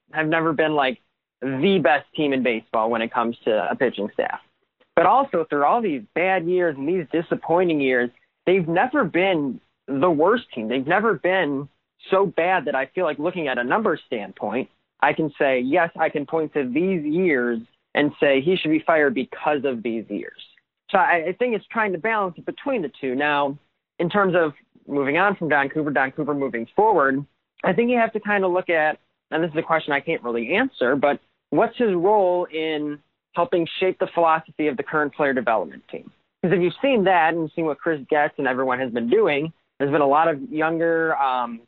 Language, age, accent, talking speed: English, 20-39, American, 210 wpm